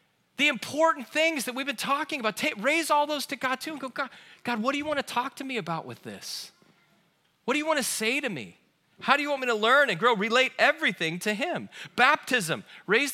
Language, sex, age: English, male, 40-59